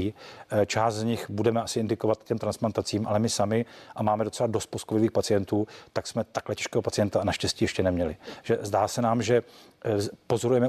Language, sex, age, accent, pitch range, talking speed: Czech, male, 40-59, native, 105-115 Hz, 180 wpm